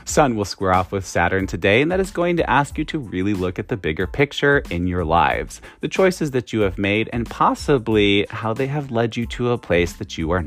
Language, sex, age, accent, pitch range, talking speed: English, male, 30-49, American, 95-150 Hz, 245 wpm